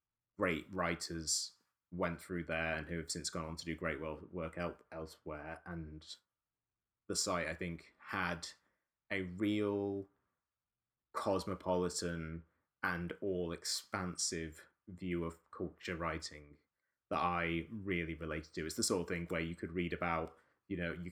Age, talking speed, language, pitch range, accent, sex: 20-39, 140 wpm, English, 80-90 Hz, British, male